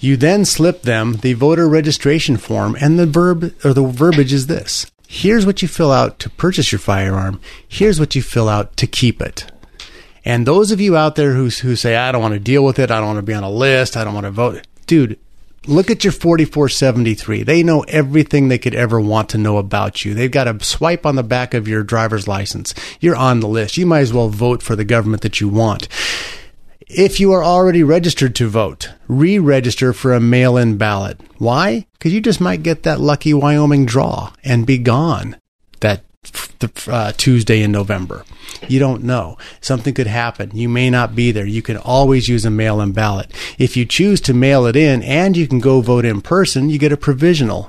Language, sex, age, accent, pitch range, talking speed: English, male, 30-49, American, 110-150 Hz, 215 wpm